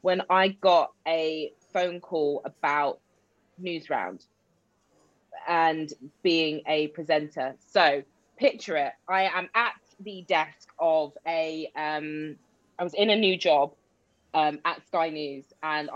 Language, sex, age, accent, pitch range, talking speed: English, female, 20-39, British, 155-190 Hz, 130 wpm